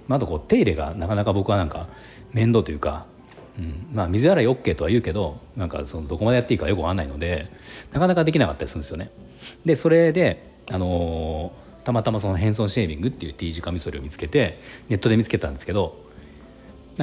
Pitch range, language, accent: 85-130 Hz, Japanese, native